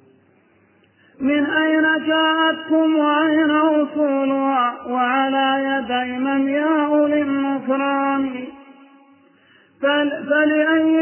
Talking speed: 60 wpm